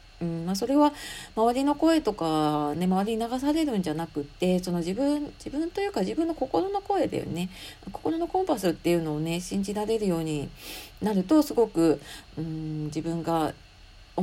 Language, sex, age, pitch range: Japanese, female, 40-59, 165-260 Hz